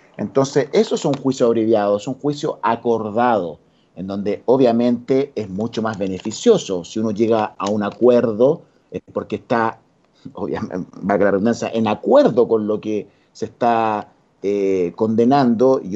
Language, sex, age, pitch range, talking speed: Spanish, male, 50-69, 100-135 Hz, 145 wpm